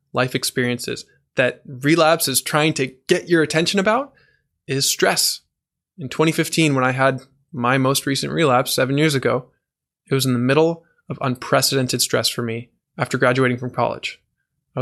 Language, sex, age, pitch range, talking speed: English, male, 20-39, 130-165 Hz, 160 wpm